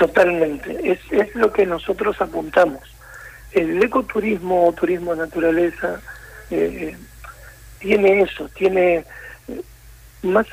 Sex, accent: male, Argentinian